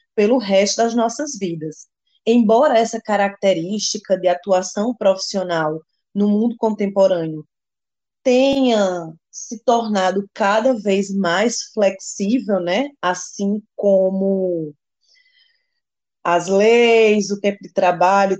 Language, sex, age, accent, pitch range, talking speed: Portuguese, female, 20-39, Brazilian, 185-225 Hz, 100 wpm